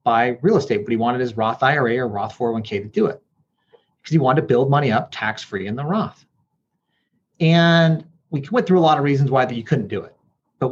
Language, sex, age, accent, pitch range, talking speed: English, male, 30-49, American, 125-165 Hz, 230 wpm